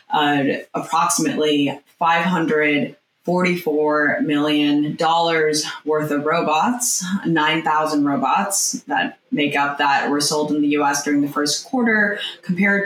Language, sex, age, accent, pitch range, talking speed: English, female, 20-39, American, 150-185 Hz, 105 wpm